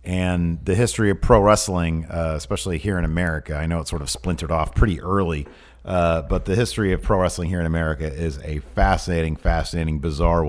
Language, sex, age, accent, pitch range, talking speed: English, male, 40-59, American, 80-110 Hz, 200 wpm